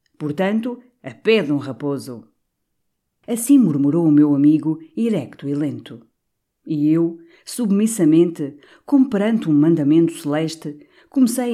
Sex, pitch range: female, 145-195 Hz